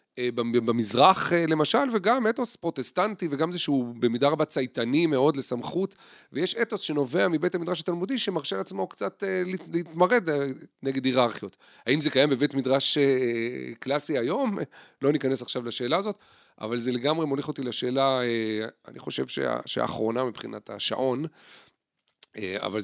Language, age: Hebrew, 40-59